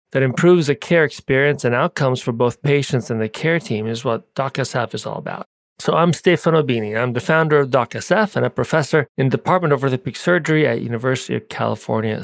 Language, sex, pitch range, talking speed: English, male, 120-160 Hz, 205 wpm